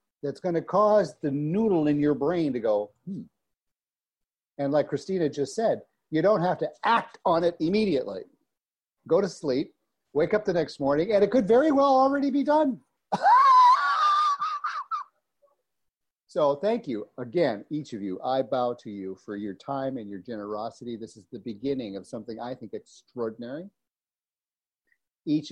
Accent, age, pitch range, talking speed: American, 50-69, 120-185 Hz, 160 wpm